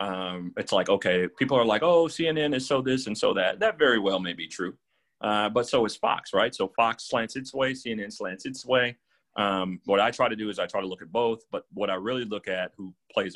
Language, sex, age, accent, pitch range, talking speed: English, male, 40-59, American, 90-130 Hz, 255 wpm